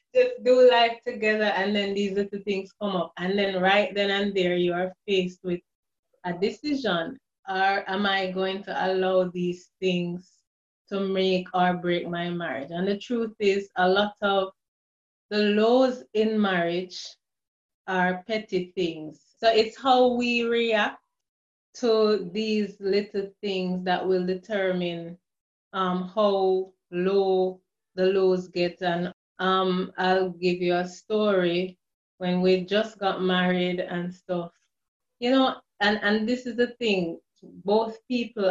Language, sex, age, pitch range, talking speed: English, female, 20-39, 180-210 Hz, 145 wpm